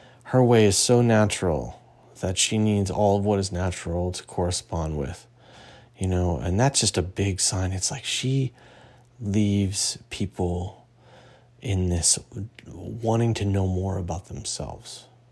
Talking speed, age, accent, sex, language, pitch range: 145 wpm, 30-49, American, male, English, 95-120 Hz